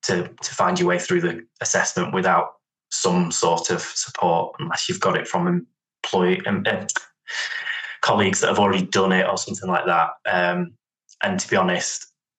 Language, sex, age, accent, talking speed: English, male, 20-39, British, 180 wpm